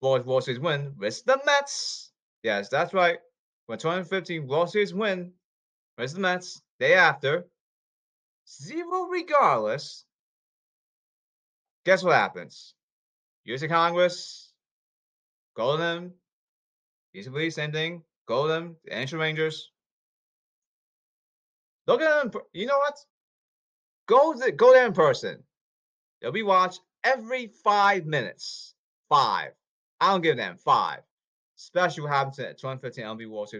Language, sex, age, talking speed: English, male, 30-49, 120 wpm